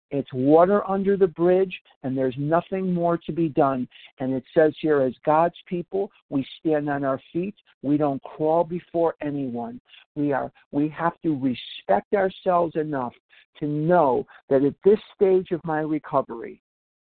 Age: 60-79